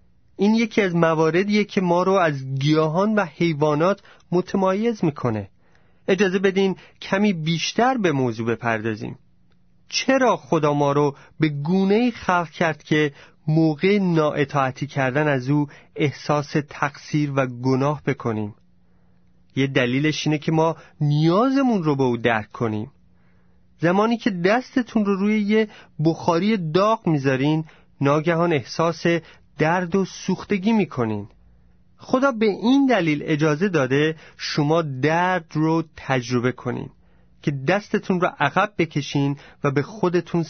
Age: 30-49